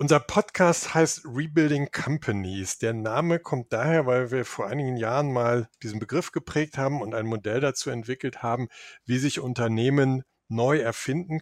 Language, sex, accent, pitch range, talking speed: German, male, German, 120-145 Hz, 160 wpm